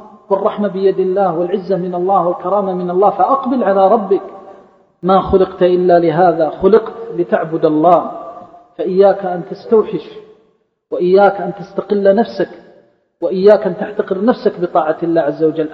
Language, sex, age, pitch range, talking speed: Arabic, male, 40-59, 170-205 Hz, 130 wpm